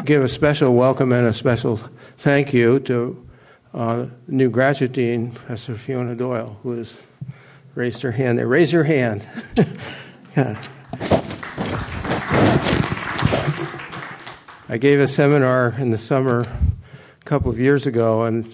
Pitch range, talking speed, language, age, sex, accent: 115-135 Hz, 125 wpm, English, 60-79, male, American